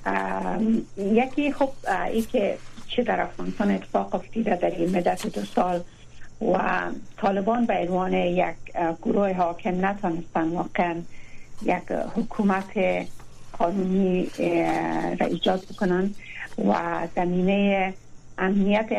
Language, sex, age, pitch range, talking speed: Persian, female, 60-79, 170-210 Hz, 105 wpm